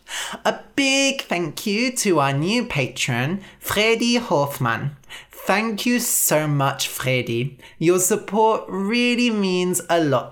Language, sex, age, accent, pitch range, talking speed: English, male, 30-49, British, 140-235 Hz, 120 wpm